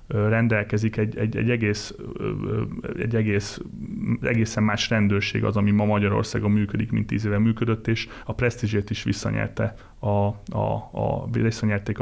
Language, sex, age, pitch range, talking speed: Hungarian, male, 30-49, 105-115 Hz, 140 wpm